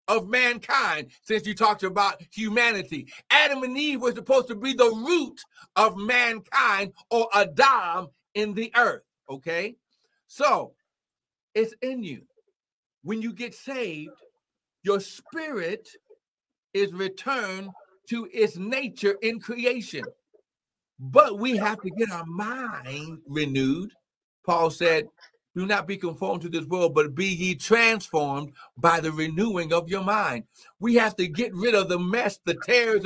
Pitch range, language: 175-235 Hz, English